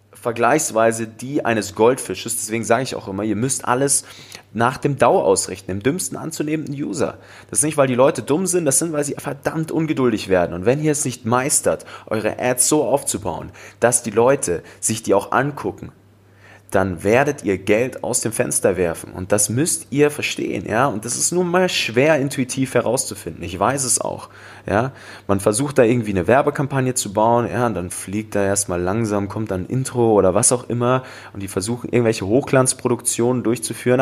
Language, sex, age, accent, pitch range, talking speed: German, male, 30-49, German, 105-130 Hz, 190 wpm